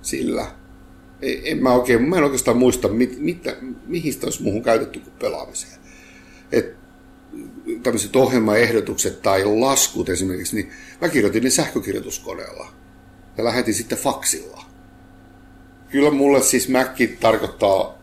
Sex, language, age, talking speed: male, Finnish, 60-79, 115 wpm